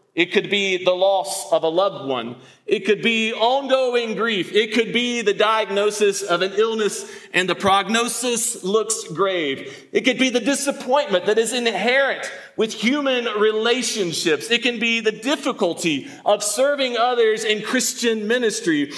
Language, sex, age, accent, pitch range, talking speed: English, male, 40-59, American, 200-260 Hz, 155 wpm